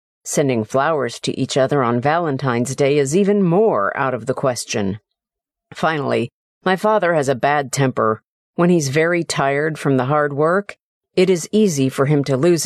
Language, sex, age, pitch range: Chinese, female, 50-69, 130-195 Hz